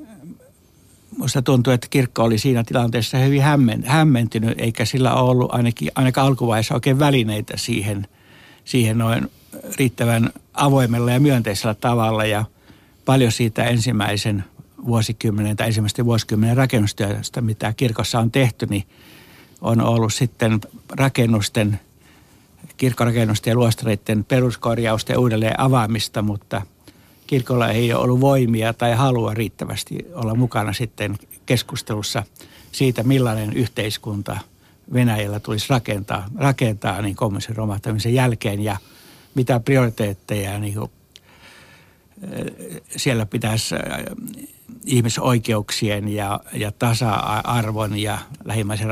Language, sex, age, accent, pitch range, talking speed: Finnish, male, 60-79, native, 110-130 Hz, 105 wpm